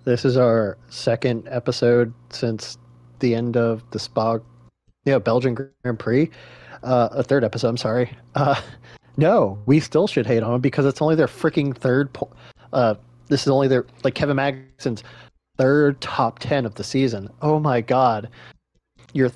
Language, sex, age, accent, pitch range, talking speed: English, male, 30-49, American, 115-135 Hz, 170 wpm